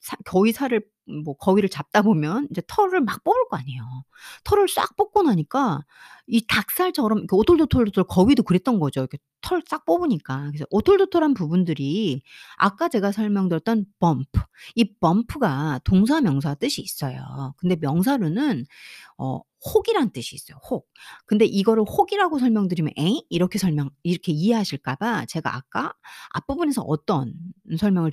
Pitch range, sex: 155-255 Hz, female